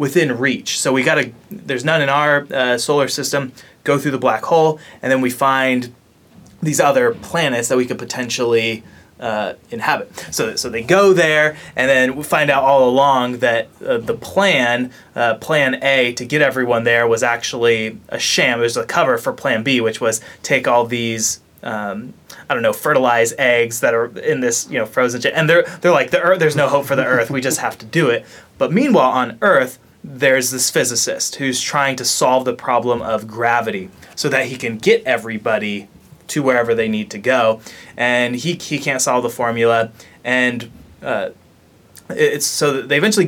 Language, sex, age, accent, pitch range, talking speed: English, male, 20-39, American, 115-140 Hz, 200 wpm